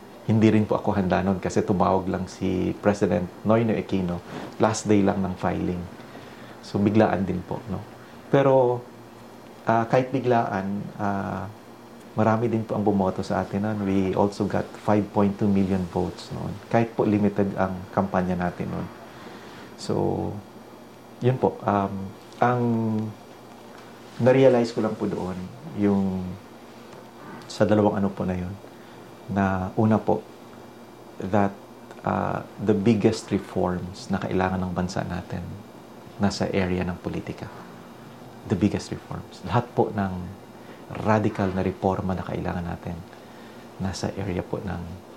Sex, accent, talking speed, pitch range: male, native, 135 wpm, 95-115 Hz